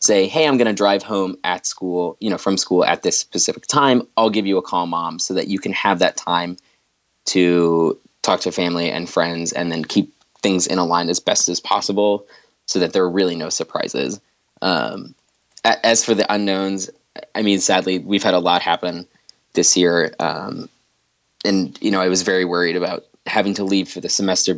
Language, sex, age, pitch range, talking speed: English, male, 20-39, 90-100 Hz, 210 wpm